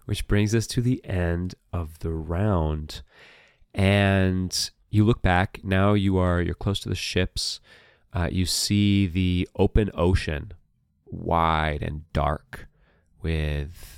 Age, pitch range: 30-49, 80-95 Hz